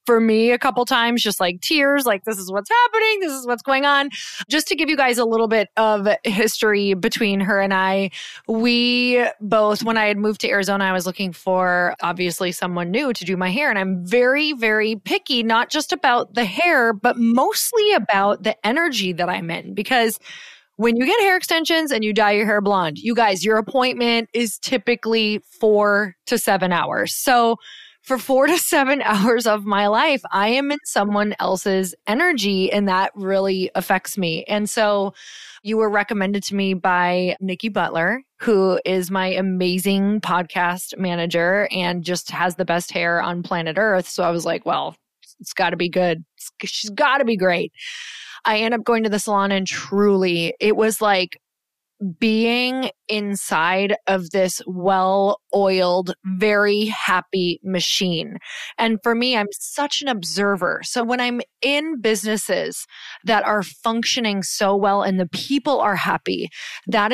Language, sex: English, female